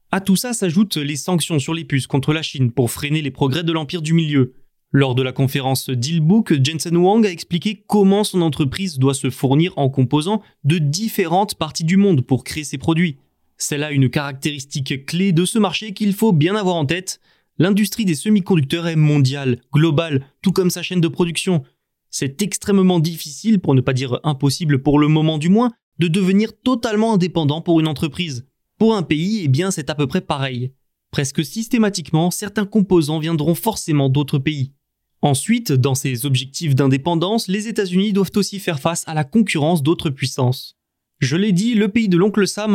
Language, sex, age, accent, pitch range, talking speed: French, male, 20-39, French, 145-195 Hz, 190 wpm